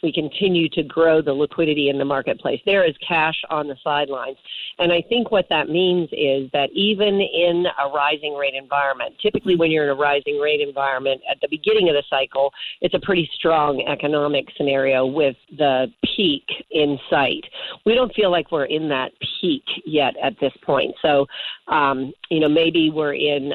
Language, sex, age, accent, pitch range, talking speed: English, female, 50-69, American, 140-170 Hz, 200 wpm